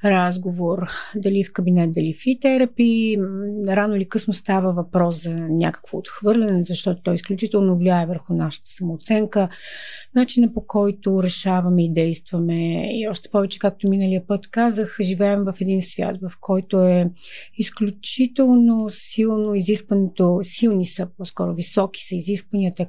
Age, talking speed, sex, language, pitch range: 30-49, 135 wpm, female, Bulgarian, 180-215 Hz